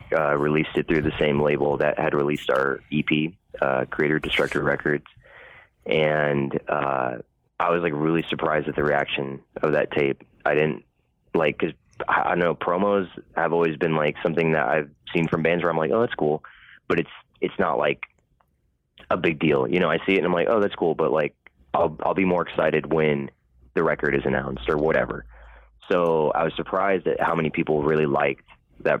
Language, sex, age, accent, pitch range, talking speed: English, male, 20-39, American, 70-80 Hz, 200 wpm